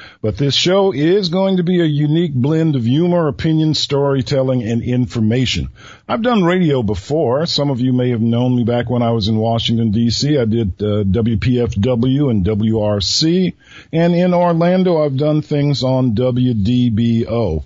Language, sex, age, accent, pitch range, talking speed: English, male, 50-69, American, 115-155 Hz, 165 wpm